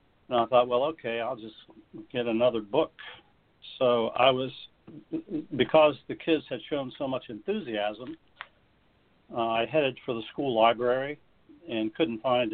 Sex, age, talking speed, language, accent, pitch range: male, 60-79, 150 wpm, English, American, 110-145 Hz